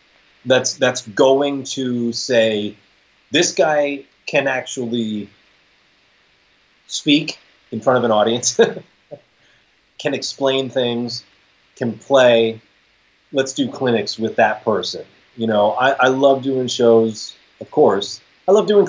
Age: 30-49